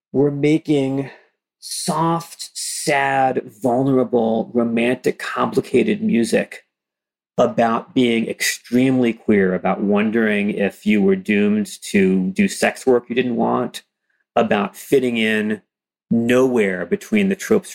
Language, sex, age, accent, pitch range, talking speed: English, male, 40-59, American, 110-170 Hz, 110 wpm